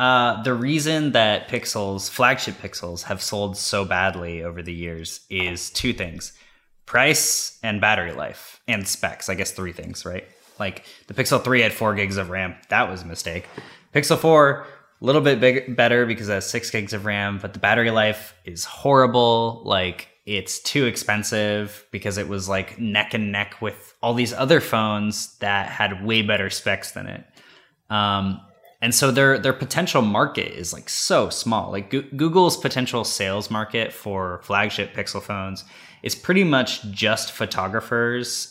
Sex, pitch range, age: male, 100-125 Hz, 20-39